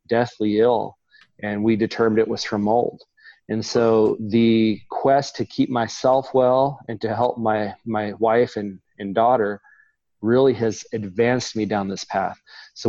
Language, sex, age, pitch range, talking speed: English, male, 30-49, 105-120 Hz, 160 wpm